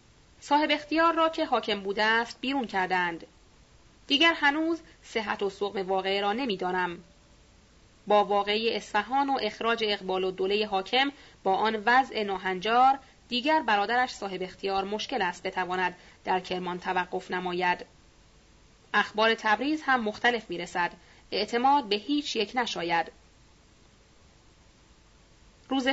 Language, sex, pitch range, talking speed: Persian, female, 195-275 Hz, 125 wpm